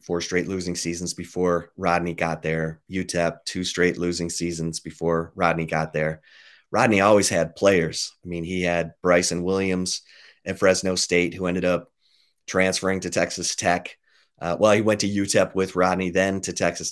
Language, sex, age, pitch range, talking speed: English, male, 30-49, 85-95 Hz, 170 wpm